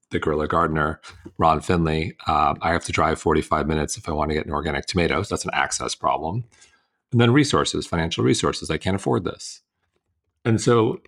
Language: English